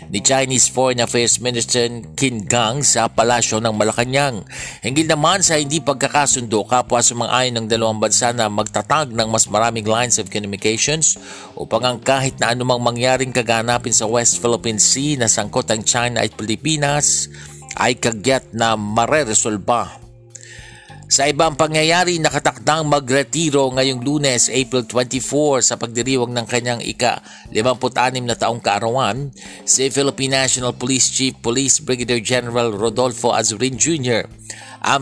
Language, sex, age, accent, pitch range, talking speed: Filipino, male, 50-69, native, 115-135 Hz, 135 wpm